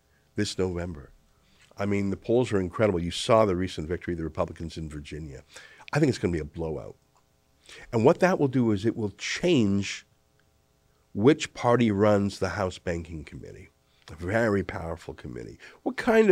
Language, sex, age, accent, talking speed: English, male, 50-69, American, 175 wpm